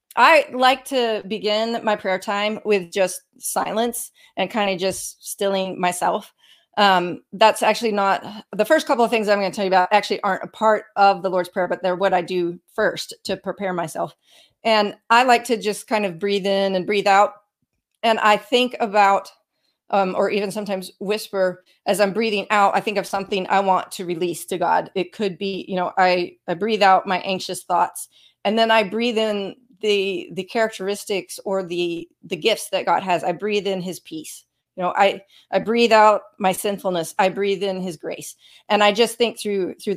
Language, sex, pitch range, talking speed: English, female, 185-220 Hz, 200 wpm